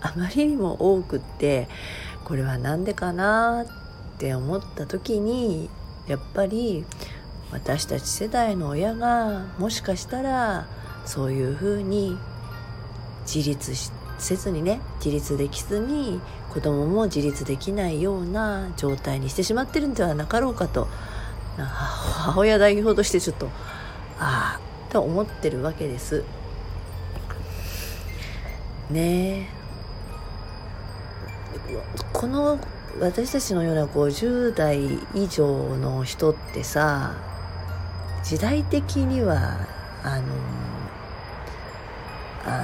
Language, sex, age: Japanese, female, 40-59